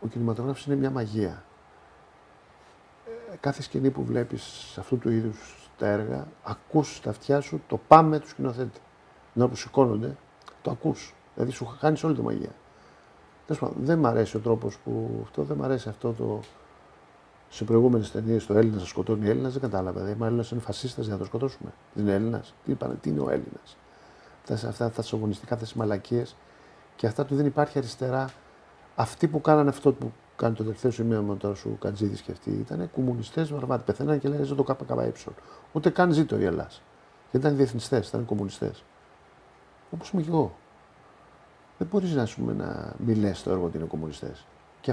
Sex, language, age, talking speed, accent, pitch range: male, Greek, 50-69, 180 wpm, native, 105-140 Hz